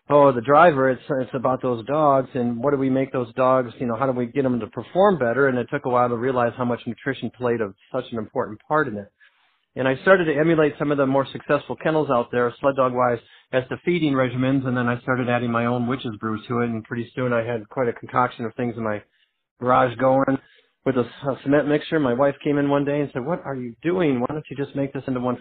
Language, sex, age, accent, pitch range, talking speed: English, male, 50-69, American, 120-140 Hz, 265 wpm